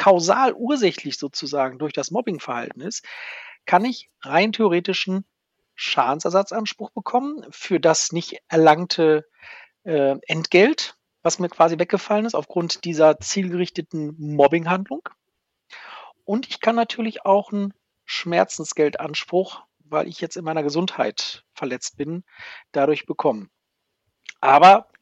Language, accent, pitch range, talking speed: German, German, 150-205 Hz, 110 wpm